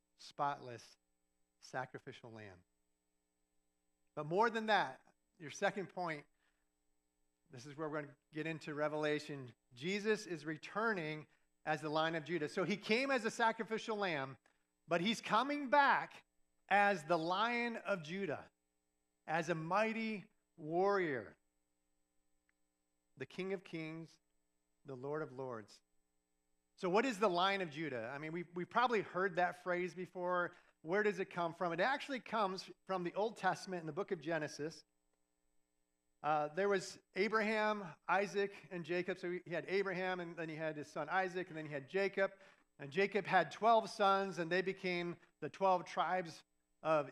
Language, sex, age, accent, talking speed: English, male, 50-69, American, 155 wpm